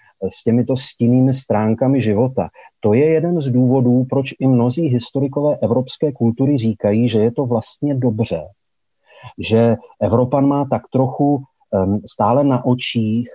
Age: 40-59